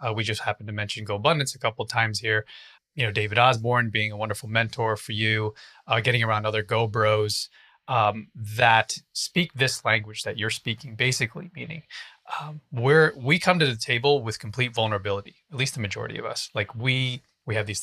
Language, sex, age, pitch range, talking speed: English, male, 30-49, 110-145 Hz, 200 wpm